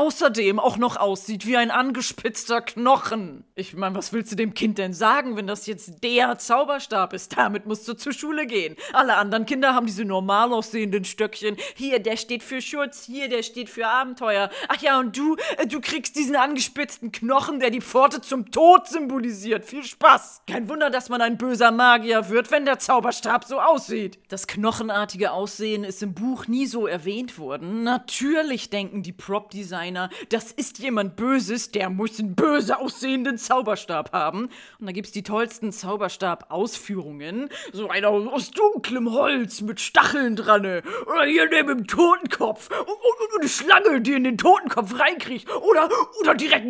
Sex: female